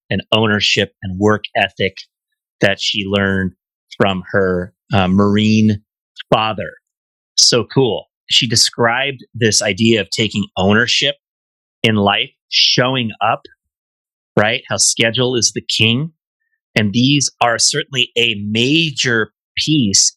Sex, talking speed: male, 115 wpm